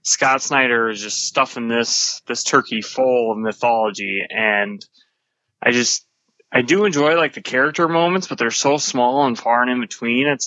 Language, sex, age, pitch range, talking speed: English, male, 20-39, 115-145 Hz, 180 wpm